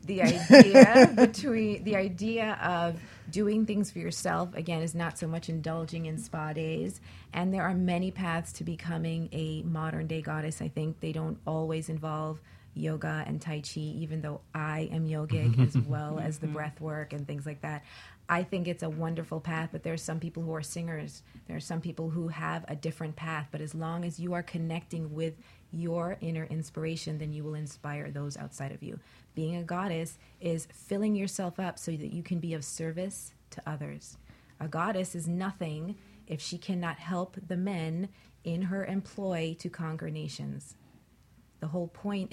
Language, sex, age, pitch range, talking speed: English, female, 30-49, 155-180 Hz, 185 wpm